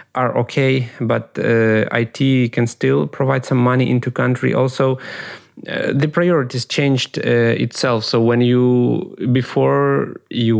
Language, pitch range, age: Ukrainian, 110-125 Hz, 30-49